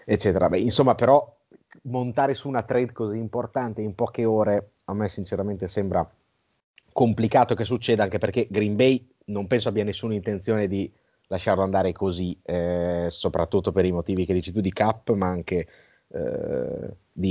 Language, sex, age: Italian, male, 30-49